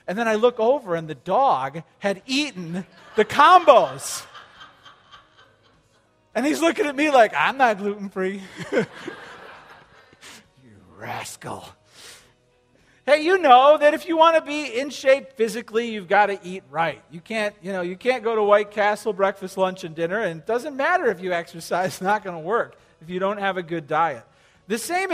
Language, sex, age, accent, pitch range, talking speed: English, male, 40-59, American, 170-240 Hz, 180 wpm